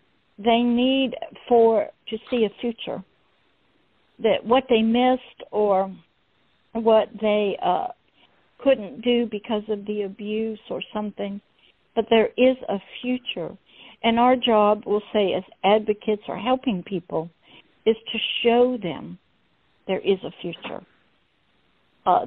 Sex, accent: female, American